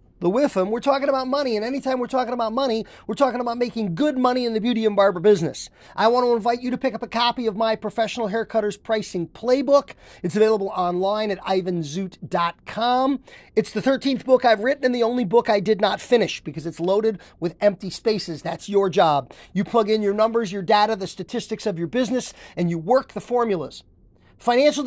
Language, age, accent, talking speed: English, 40-59, American, 205 wpm